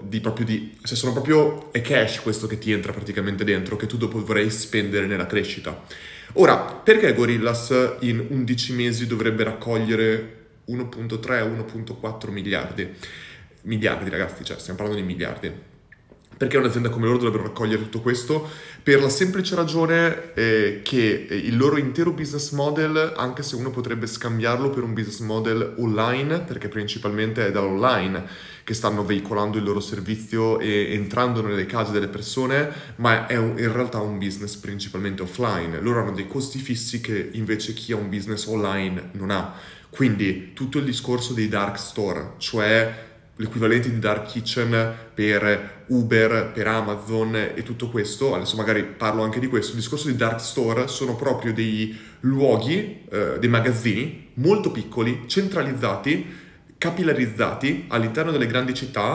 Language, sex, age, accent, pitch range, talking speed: Italian, male, 20-39, native, 105-125 Hz, 155 wpm